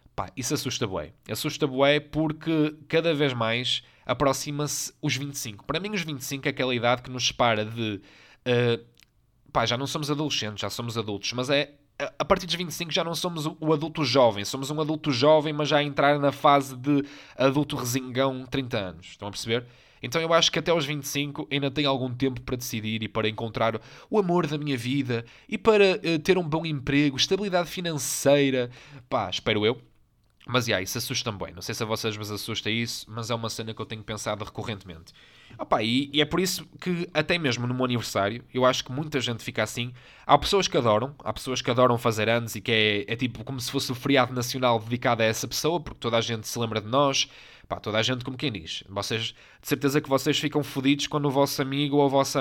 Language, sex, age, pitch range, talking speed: Portuguese, male, 20-39, 115-145 Hz, 220 wpm